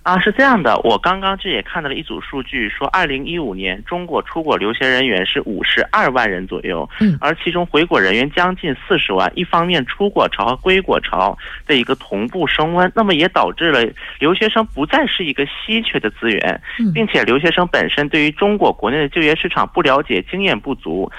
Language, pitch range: Korean, 145-195 Hz